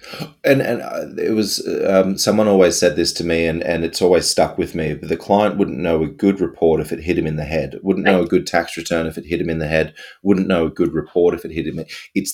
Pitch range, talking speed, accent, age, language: 85-110 Hz, 275 wpm, Australian, 30-49, English